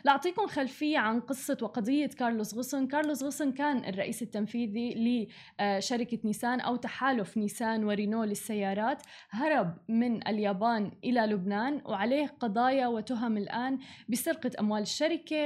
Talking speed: 125 wpm